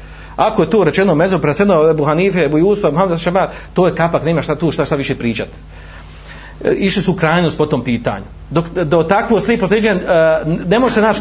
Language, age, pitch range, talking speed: Croatian, 40-59, 160-225 Hz, 195 wpm